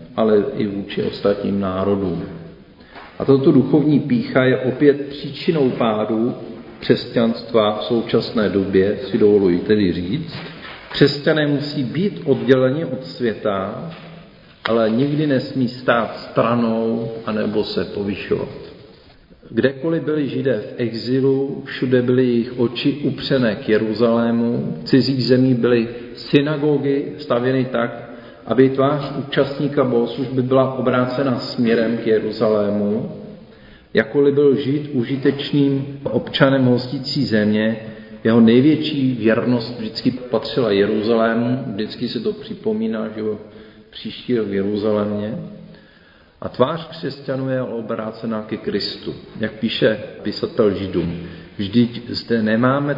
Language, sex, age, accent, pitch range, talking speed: Czech, male, 50-69, native, 110-135 Hz, 110 wpm